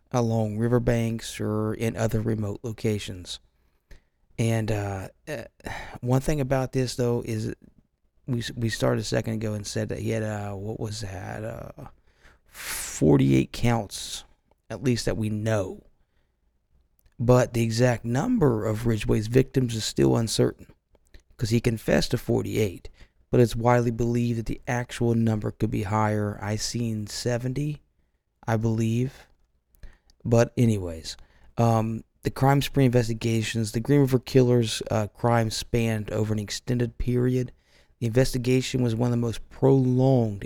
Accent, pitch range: American, 95-120 Hz